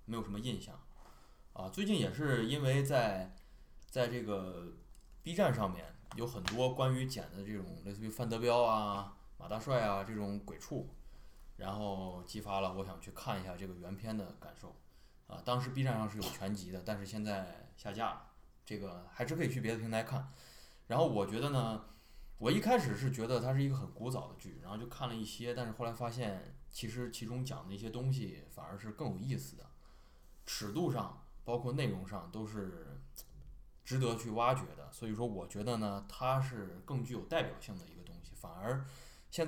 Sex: male